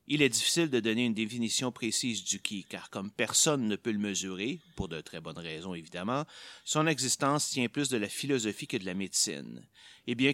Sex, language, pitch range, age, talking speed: male, French, 105-130 Hz, 30-49, 210 wpm